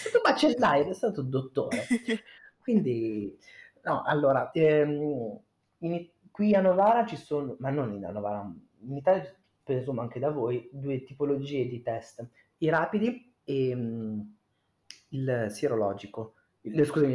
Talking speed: 125 wpm